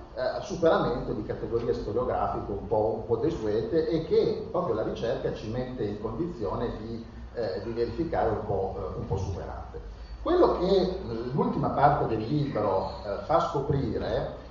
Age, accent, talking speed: 40-59, native, 150 wpm